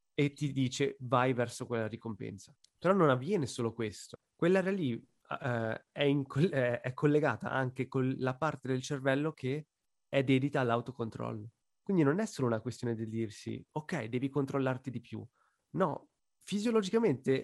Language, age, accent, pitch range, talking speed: Italian, 30-49, native, 120-145 Hz, 150 wpm